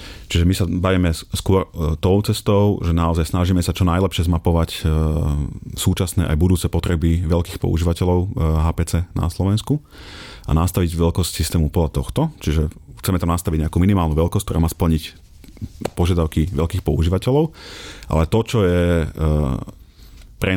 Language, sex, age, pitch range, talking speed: Slovak, male, 30-49, 80-90 Hz, 135 wpm